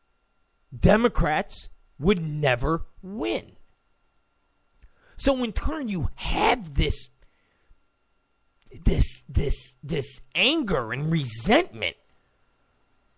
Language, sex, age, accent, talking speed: English, male, 40-59, American, 75 wpm